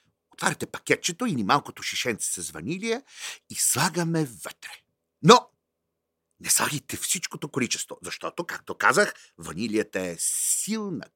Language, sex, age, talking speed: Bulgarian, male, 50-69, 115 wpm